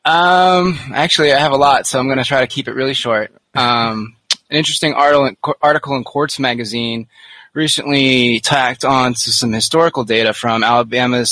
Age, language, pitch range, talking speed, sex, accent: 20-39, English, 110-135 Hz, 170 wpm, male, American